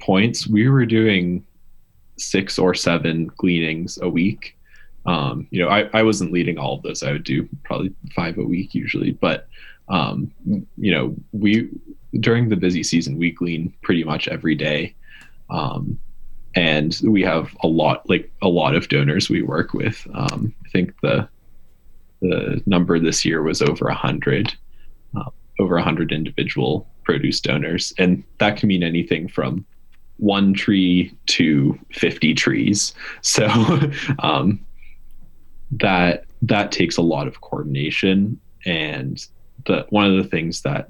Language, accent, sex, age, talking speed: English, American, male, 10-29, 150 wpm